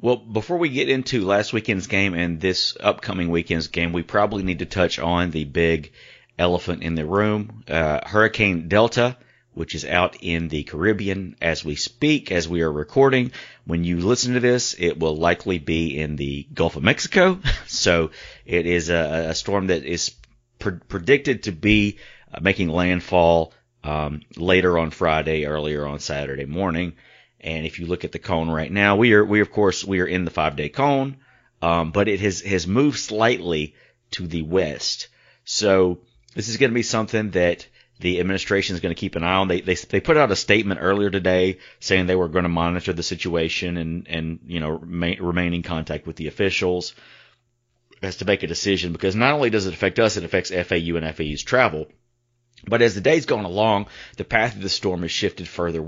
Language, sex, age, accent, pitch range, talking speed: English, male, 30-49, American, 85-105 Hz, 200 wpm